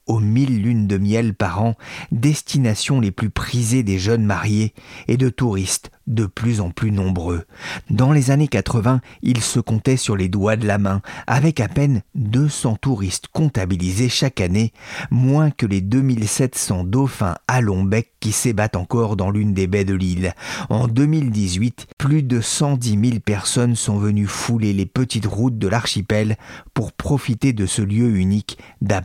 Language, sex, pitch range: French, male, 100-130 Hz